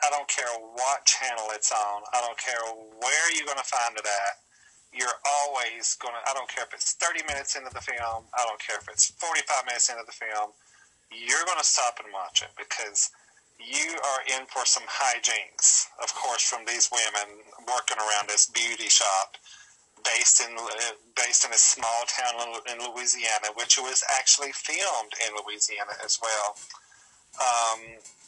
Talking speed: 175 wpm